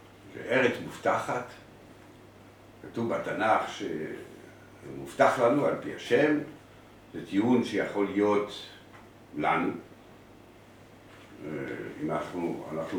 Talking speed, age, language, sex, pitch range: 80 wpm, 60-79, Hebrew, male, 95-120 Hz